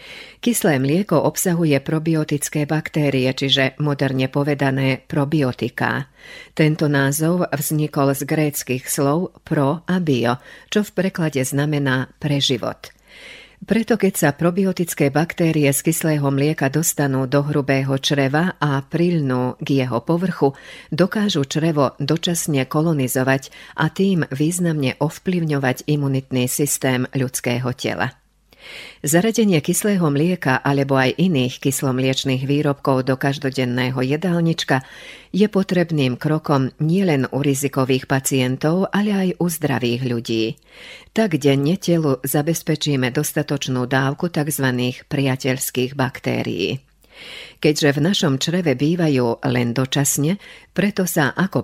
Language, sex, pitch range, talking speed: Slovak, female, 130-165 Hz, 110 wpm